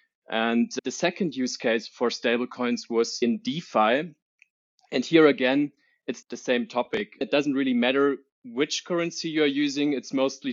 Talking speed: 160 wpm